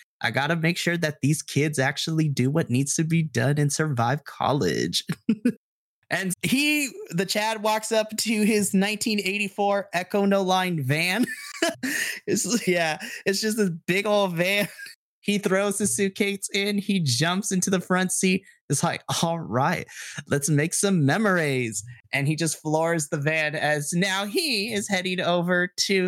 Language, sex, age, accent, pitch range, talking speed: English, male, 20-39, American, 160-200 Hz, 165 wpm